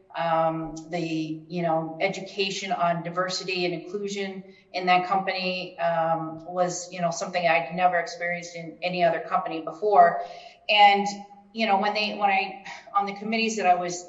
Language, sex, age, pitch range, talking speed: English, female, 40-59, 165-190 Hz, 160 wpm